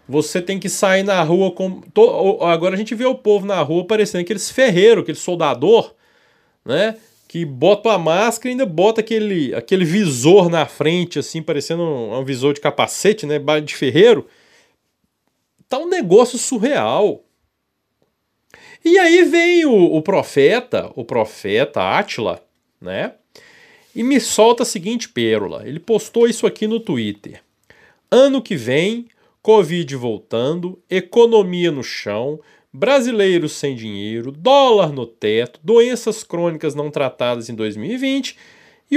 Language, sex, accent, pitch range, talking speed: Portuguese, male, Brazilian, 150-230 Hz, 140 wpm